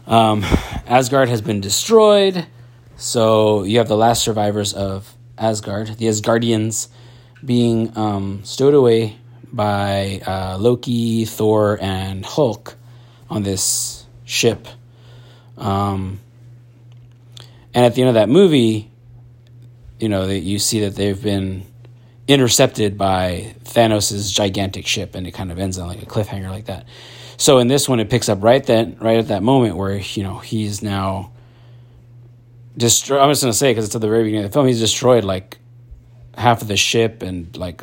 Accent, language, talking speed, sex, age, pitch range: American, English, 160 wpm, male, 30-49, 105-120 Hz